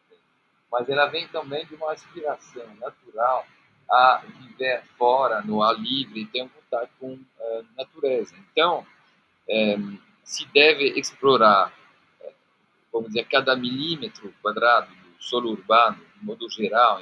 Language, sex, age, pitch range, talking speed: Portuguese, male, 40-59, 120-165 Hz, 130 wpm